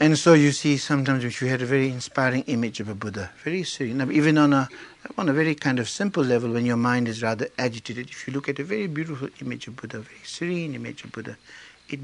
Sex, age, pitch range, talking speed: male, 60-79, 115-145 Hz, 250 wpm